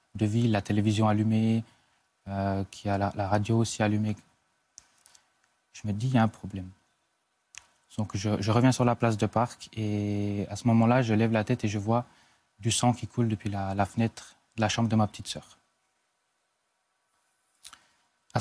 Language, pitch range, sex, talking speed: French, 105-120 Hz, male, 185 wpm